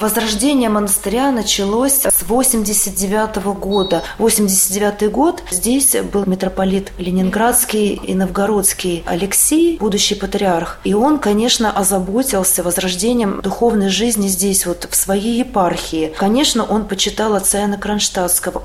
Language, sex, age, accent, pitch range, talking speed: Russian, female, 30-49, native, 190-220 Hz, 115 wpm